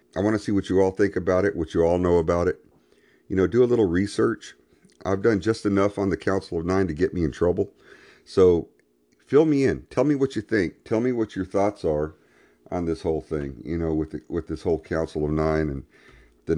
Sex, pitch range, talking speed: male, 75-100 Hz, 245 wpm